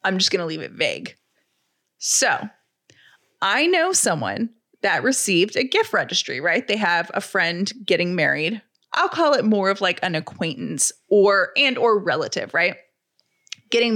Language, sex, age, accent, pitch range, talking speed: English, female, 30-49, American, 195-270 Hz, 160 wpm